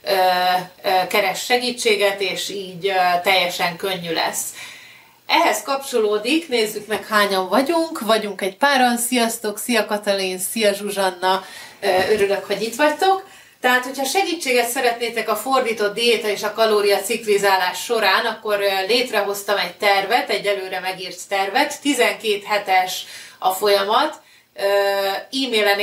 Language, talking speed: Hungarian, 115 wpm